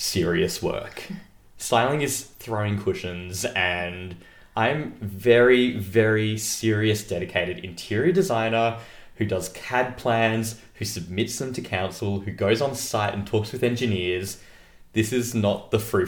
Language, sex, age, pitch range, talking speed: English, male, 20-39, 95-115 Hz, 135 wpm